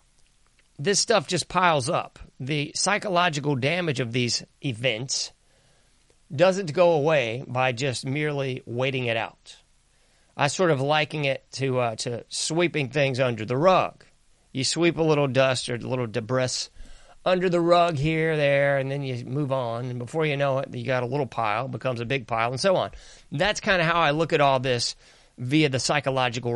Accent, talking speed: American, 185 wpm